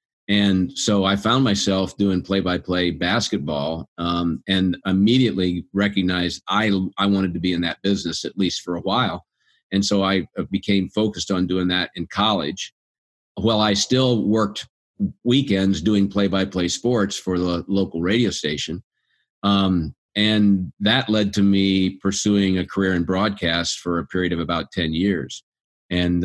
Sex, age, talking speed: male, 50-69, 155 wpm